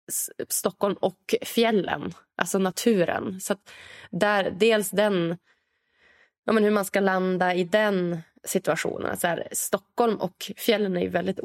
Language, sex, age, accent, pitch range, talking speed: English, female, 20-39, Swedish, 175-210 Hz, 135 wpm